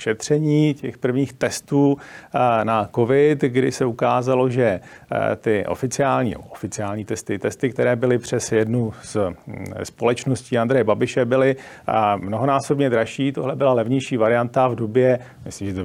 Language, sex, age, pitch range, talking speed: Czech, male, 40-59, 115-135 Hz, 135 wpm